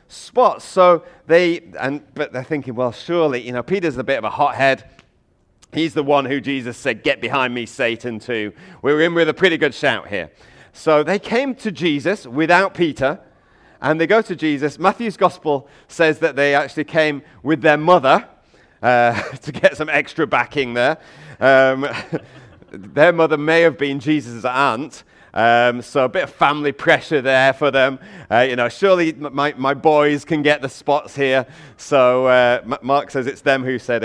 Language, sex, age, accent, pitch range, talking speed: English, male, 40-59, British, 130-170 Hz, 185 wpm